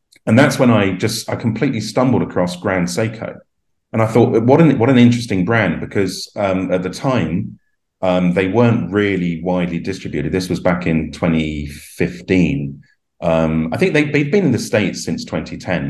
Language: English